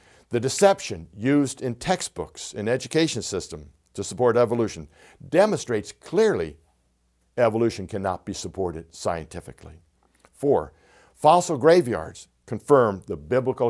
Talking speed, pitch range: 105 wpm, 75-125 Hz